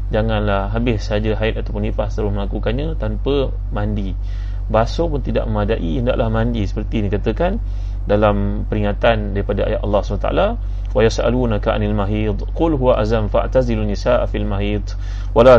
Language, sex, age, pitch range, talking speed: Malay, male, 30-49, 100-110 Hz, 155 wpm